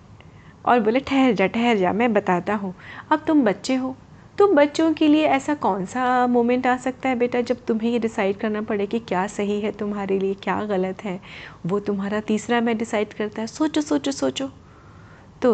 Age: 30-49